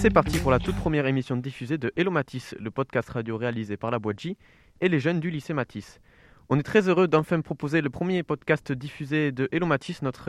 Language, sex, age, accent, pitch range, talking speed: French, male, 20-39, French, 115-140 Hz, 220 wpm